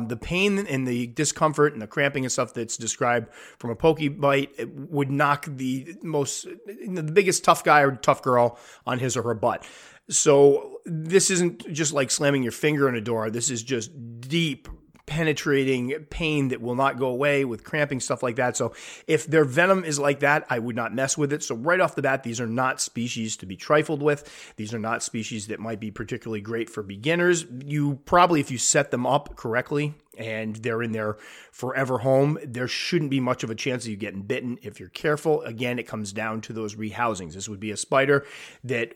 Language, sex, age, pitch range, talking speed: English, male, 30-49, 115-150 Hz, 210 wpm